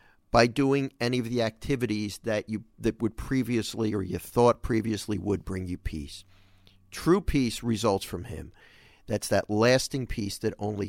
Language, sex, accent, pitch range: English, male, American, 100-150 Hz